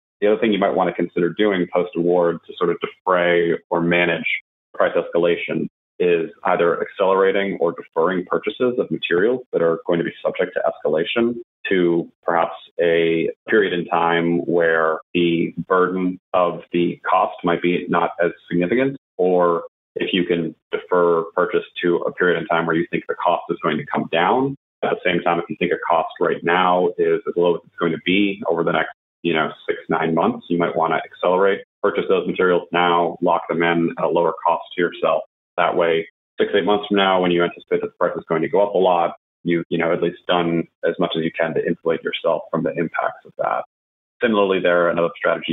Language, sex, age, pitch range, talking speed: English, male, 30-49, 85-115 Hz, 210 wpm